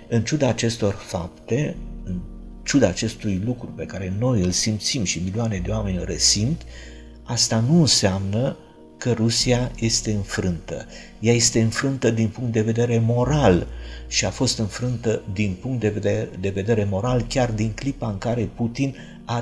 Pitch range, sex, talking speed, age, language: 100-115 Hz, male, 155 wpm, 50-69, Romanian